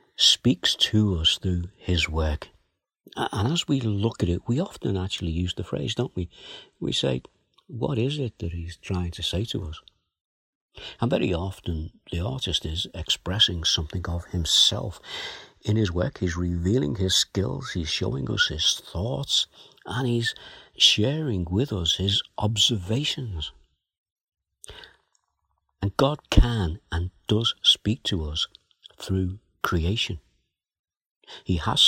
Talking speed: 135 wpm